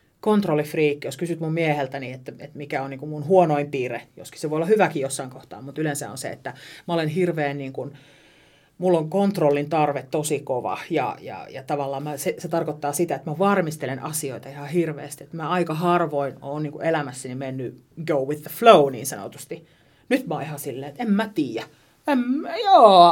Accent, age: native, 30-49